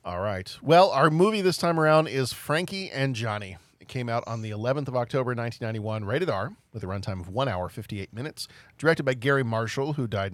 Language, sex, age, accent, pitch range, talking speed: English, male, 40-59, American, 105-135 Hz, 215 wpm